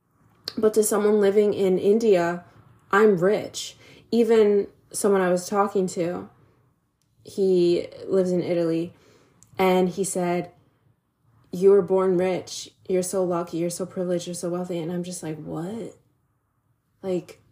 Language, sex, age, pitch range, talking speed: English, female, 20-39, 165-195 Hz, 135 wpm